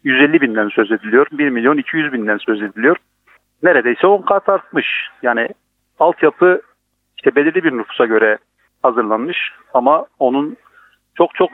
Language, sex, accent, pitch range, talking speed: Turkish, male, native, 125-180 Hz, 115 wpm